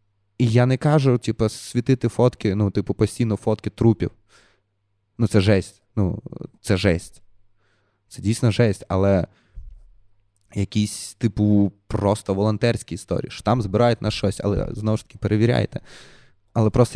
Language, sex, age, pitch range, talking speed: Ukrainian, male, 20-39, 100-120 Hz, 140 wpm